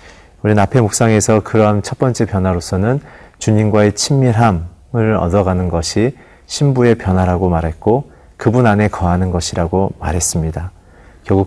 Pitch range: 90-115 Hz